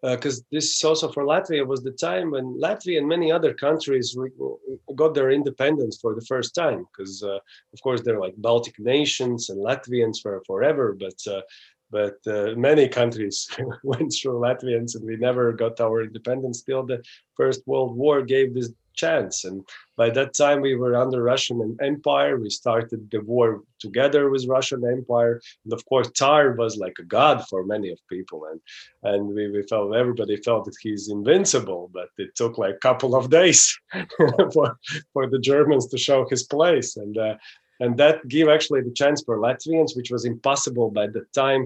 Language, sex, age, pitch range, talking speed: English, male, 30-49, 115-135 Hz, 185 wpm